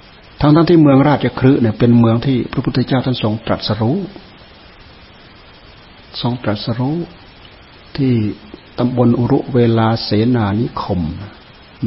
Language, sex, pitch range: Thai, male, 105-125 Hz